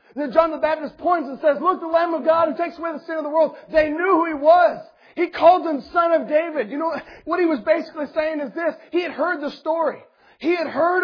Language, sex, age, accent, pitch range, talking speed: English, male, 40-59, American, 215-335 Hz, 255 wpm